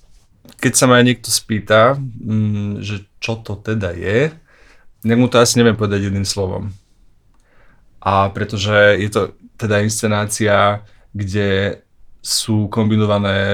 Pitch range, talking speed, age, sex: 100-115 Hz, 120 wpm, 20-39, male